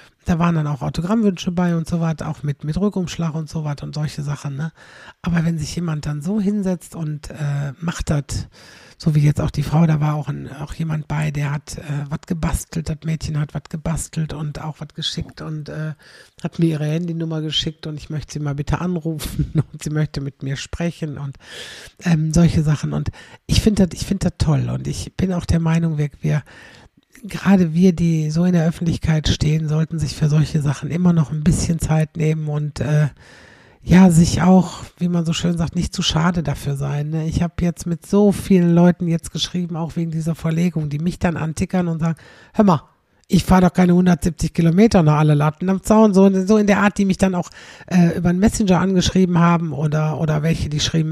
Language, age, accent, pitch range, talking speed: German, 60-79, German, 150-175 Hz, 215 wpm